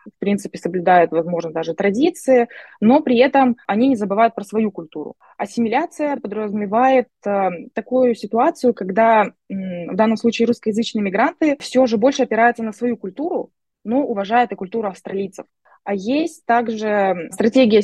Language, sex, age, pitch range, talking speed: Russian, female, 20-39, 205-250 Hz, 140 wpm